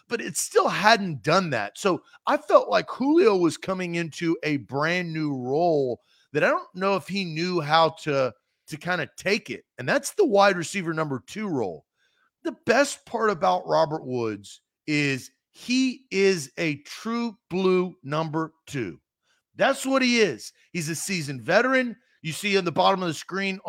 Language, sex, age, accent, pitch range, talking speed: English, male, 40-59, American, 160-225 Hz, 175 wpm